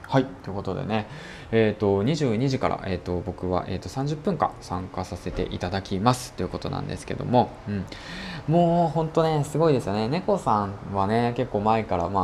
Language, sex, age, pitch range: Japanese, male, 20-39, 95-125 Hz